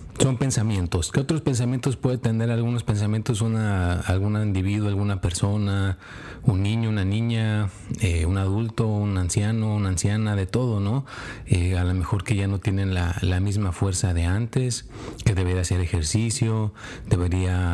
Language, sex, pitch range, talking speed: Spanish, male, 95-115 Hz, 160 wpm